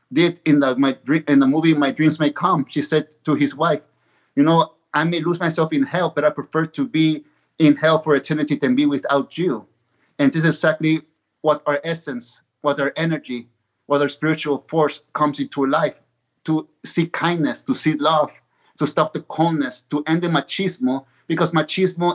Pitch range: 145-165 Hz